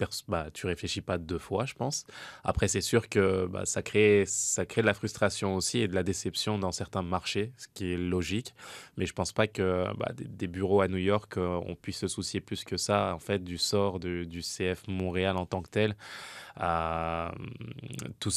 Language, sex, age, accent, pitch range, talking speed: French, male, 20-39, French, 90-105 Hz, 210 wpm